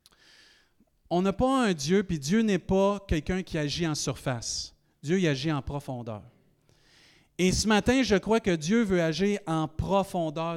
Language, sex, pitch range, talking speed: French, male, 150-225 Hz, 170 wpm